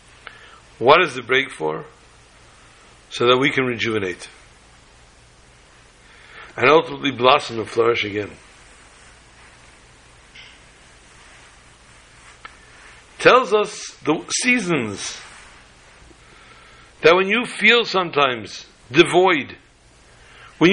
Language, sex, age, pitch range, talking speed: English, male, 60-79, 115-180 Hz, 80 wpm